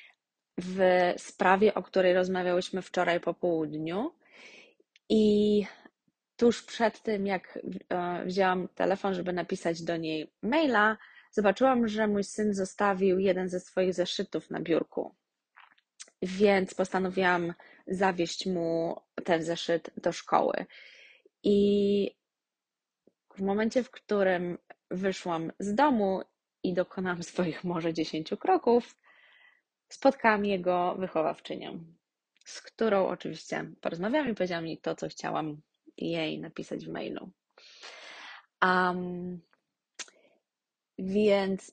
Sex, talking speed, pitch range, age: female, 105 wpm, 170-205 Hz, 20-39